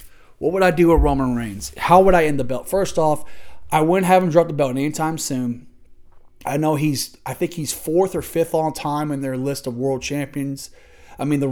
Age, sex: 30-49, male